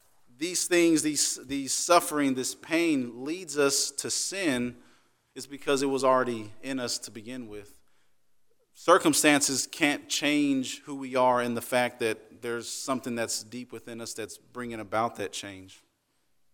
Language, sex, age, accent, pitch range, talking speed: English, male, 40-59, American, 120-155 Hz, 150 wpm